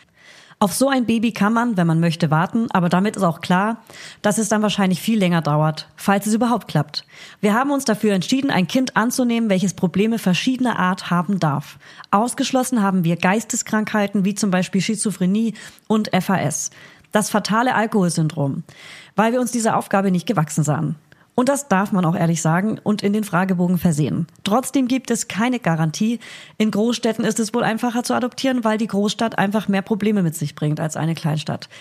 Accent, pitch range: German, 165-220 Hz